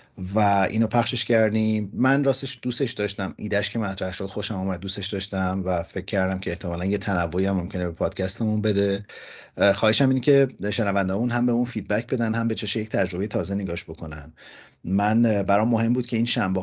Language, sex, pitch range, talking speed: Persian, male, 90-110 Hz, 190 wpm